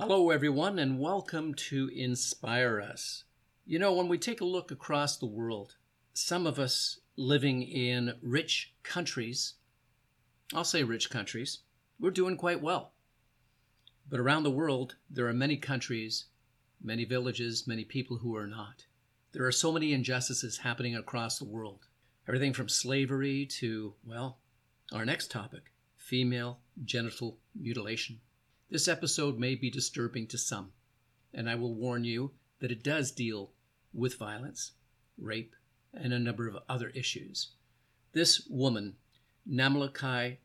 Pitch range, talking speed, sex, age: 120-135 Hz, 140 wpm, male, 50-69